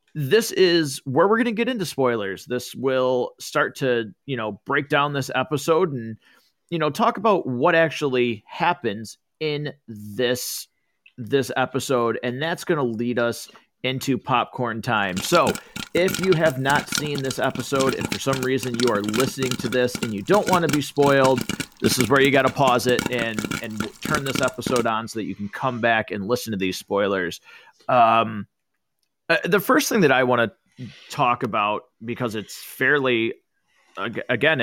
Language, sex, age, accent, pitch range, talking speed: English, male, 30-49, American, 120-155 Hz, 180 wpm